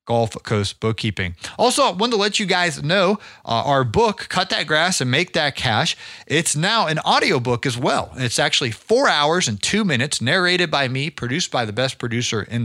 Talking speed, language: 215 wpm, English